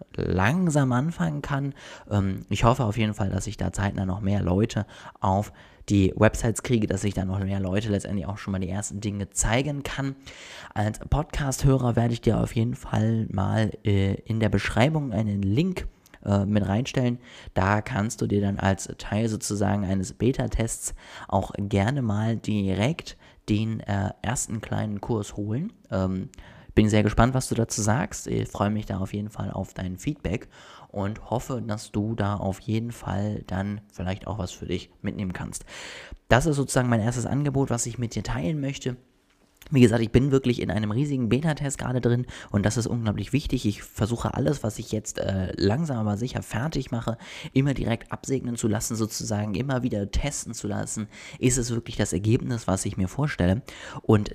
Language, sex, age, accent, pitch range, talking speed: German, male, 20-39, German, 100-125 Hz, 180 wpm